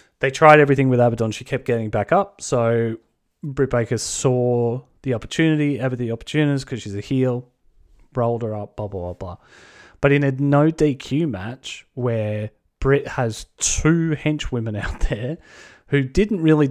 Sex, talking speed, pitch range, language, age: male, 165 wpm, 110-140 Hz, English, 30-49